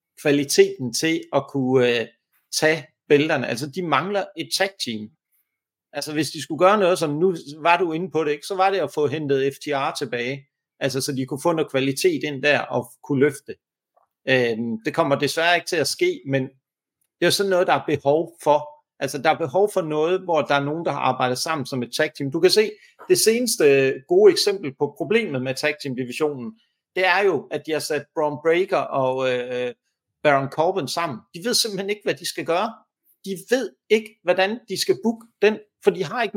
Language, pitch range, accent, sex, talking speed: Danish, 140-190 Hz, native, male, 215 wpm